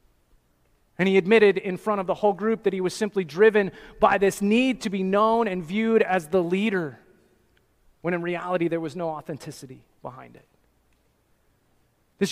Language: English